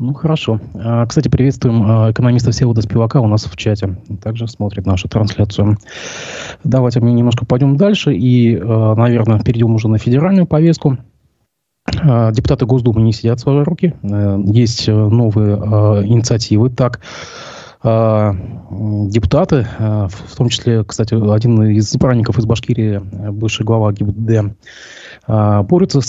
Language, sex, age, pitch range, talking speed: Russian, male, 20-39, 110-130 Hz, 120 wpm